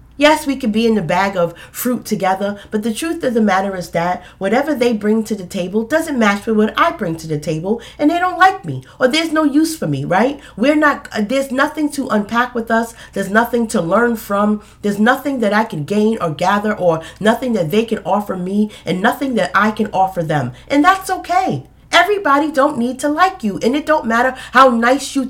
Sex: female